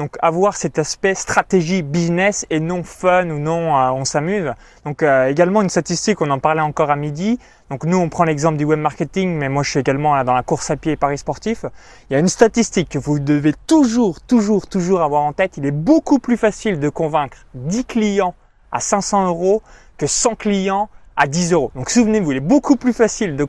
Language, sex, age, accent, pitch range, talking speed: French, male, 20-39, French, 145-195 Hz, 220 wpm